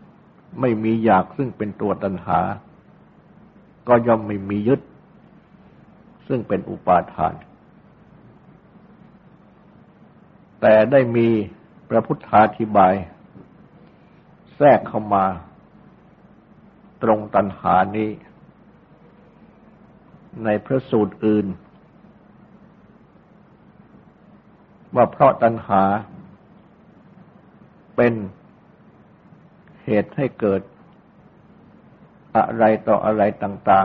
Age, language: 60-79, Thai